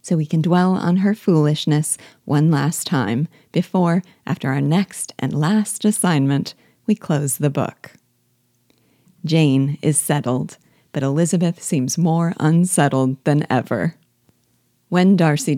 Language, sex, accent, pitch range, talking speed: English, female, American, 140-180 Hz, 125 wpm